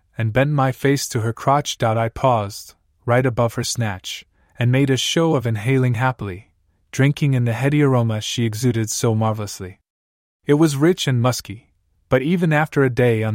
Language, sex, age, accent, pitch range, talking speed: English, male, 20-39, American, 105-140 Hz, 180 wpm